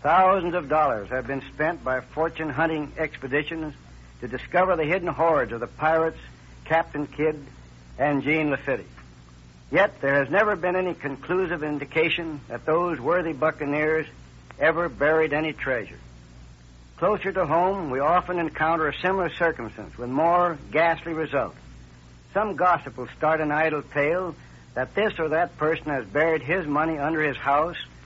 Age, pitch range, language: 60-79, 125-170 Hz, English